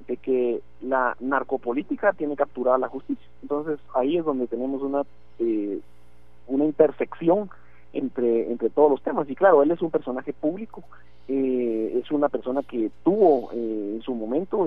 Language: Spanish